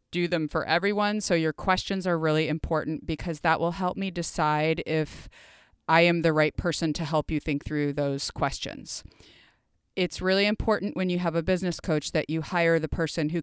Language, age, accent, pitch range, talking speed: English, 30-49, American, 150-185 Hz, 195 wpm